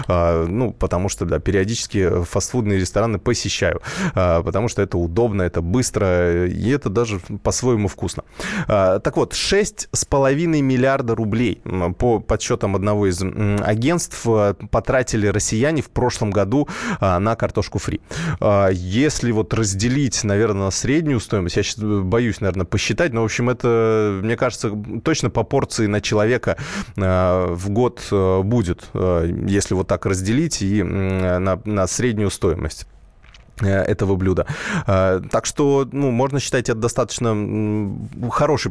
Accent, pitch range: native, 100-125 Hz